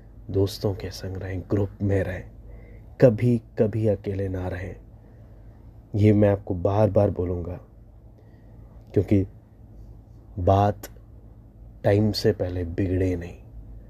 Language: Hindi